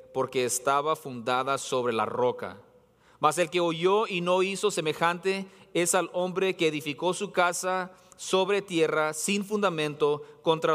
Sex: male